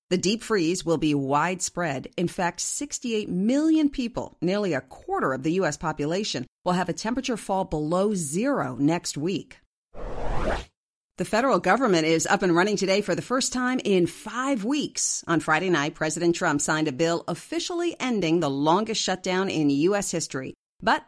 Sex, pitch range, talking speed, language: female, 165-225 Hz, 170 wpm, English